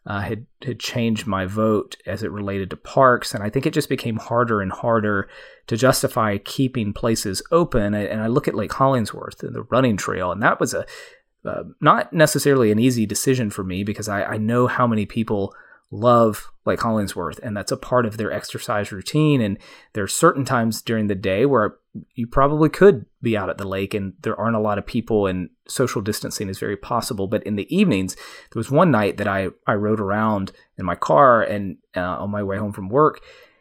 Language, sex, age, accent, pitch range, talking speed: English, male, 30-49, American, 100-125 Hz, 215 wpm